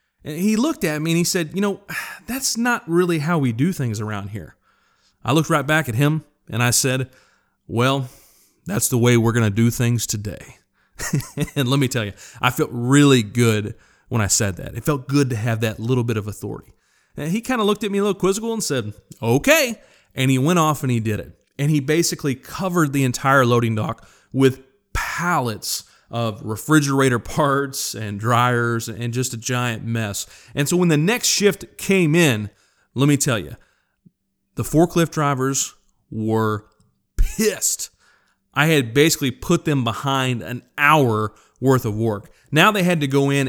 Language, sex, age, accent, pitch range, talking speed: English, male, 30-49, American, 120-160 Hz, 190 wpm